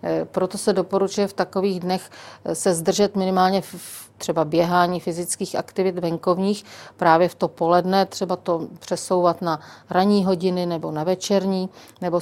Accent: native